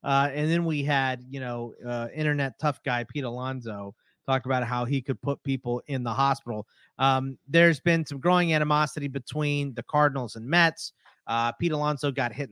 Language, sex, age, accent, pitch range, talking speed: English, male, 30-49, American, 120-160 Hz, 185 wpm